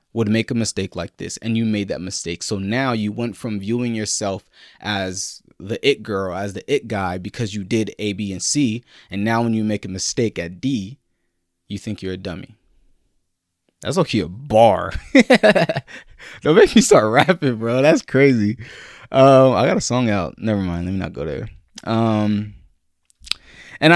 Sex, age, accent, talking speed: male, 20-39, American, 185 wpm